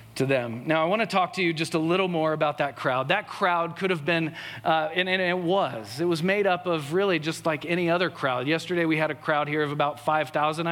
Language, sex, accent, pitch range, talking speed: English, male, American, 150-185 Hz, 260 wpm